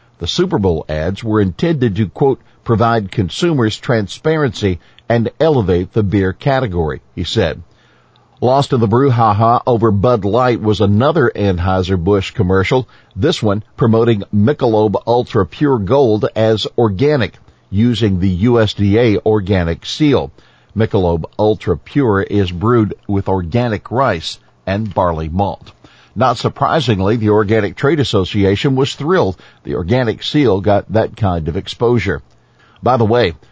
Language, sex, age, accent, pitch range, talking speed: English, male, 50-69, American, 95-120 Hz, 130 wpm